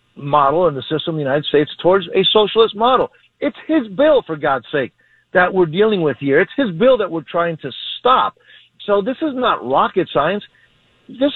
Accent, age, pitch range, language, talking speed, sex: American, 50-69, 160-210 Hz, English, 200 wpm, male